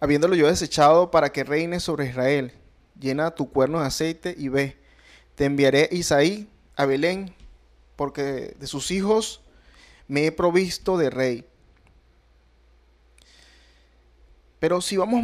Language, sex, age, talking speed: Spanish, male, 30-49, 125 wpm